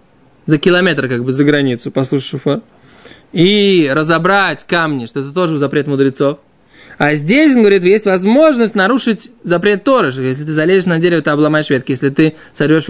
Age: 20-39